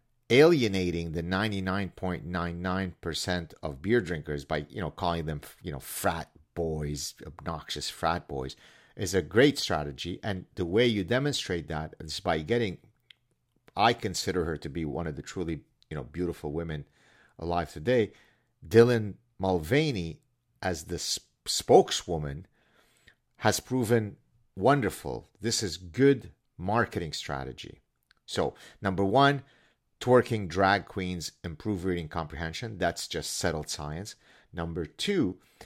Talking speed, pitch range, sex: 135 wpm, 85-115 Hz, male